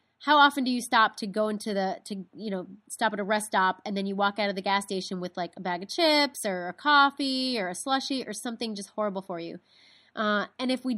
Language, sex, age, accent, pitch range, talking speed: English, female, 30-49, American, 190-235 Hz, 265 wpm